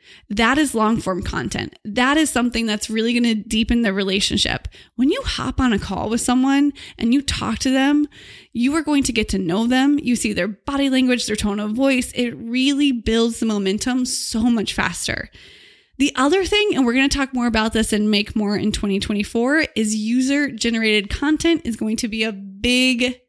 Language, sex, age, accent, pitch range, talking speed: English, female, 20-39, American, 220-275 Hz, 205 wpm